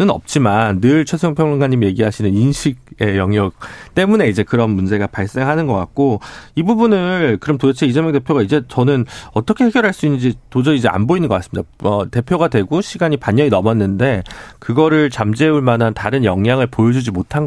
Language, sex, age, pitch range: Korean, male, 40-59, 110-160 Hz